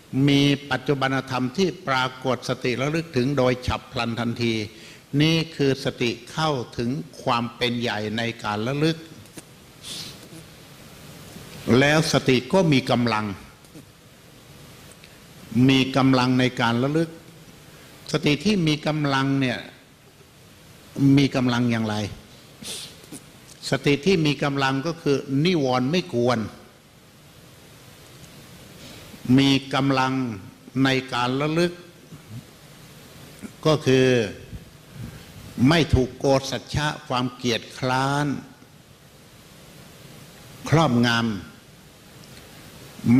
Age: 60-79